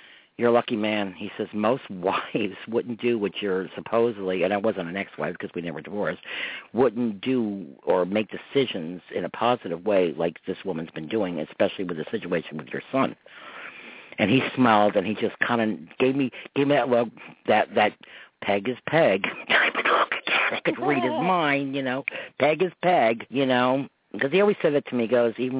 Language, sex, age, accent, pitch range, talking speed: English, male, 50-69, American, 105-130 Hz, 195 wpm